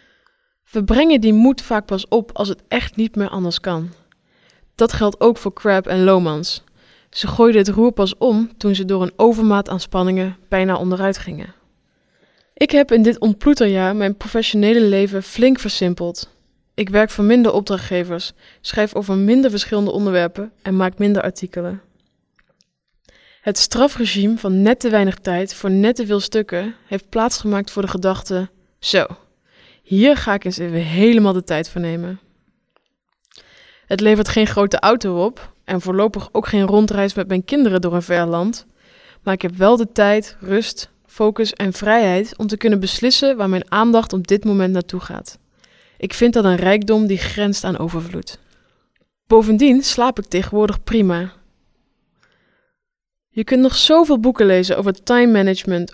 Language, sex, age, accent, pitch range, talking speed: English, female, 20-39, Dutch, 185-225 Hz, 165 wpm